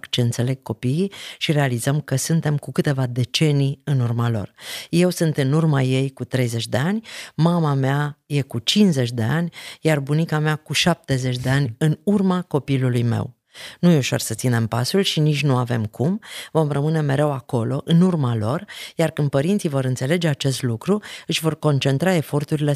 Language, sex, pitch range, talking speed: Romanian, female, 120-155 Hz, 180 wpm